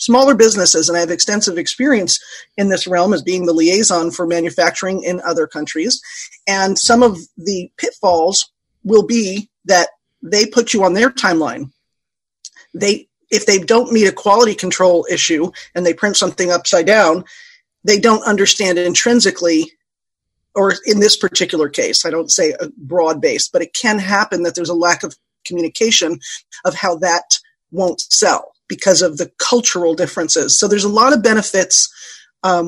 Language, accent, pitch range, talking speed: English, American, 175-220 Hz, 165 wpm